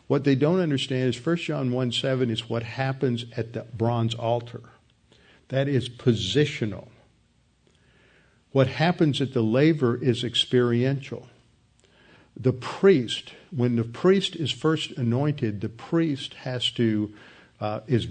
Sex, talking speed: male, 135 wpm